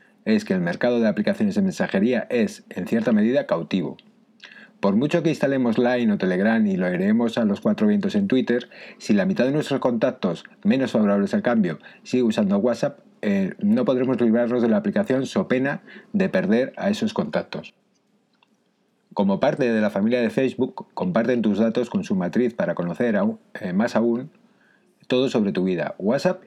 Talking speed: 180 wpm